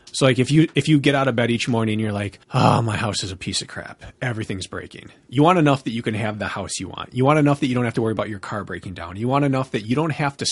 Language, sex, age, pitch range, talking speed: English, male, 30-49, 105-140 Hz, 330 wpm